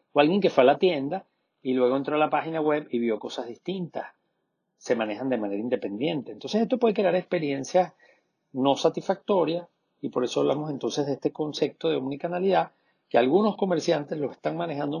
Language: Spanish